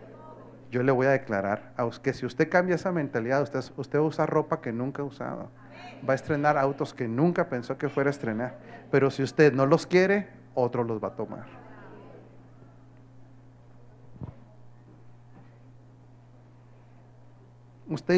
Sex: male